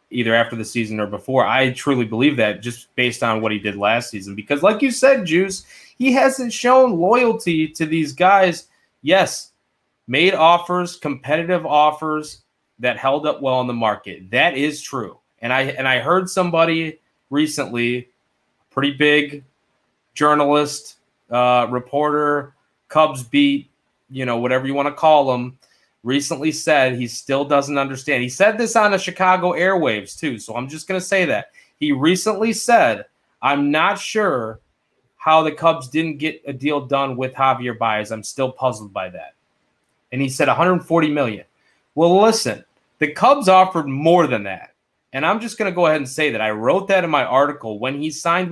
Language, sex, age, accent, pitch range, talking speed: English, male, 20-39, American, 125-170 Hz, 175 wpm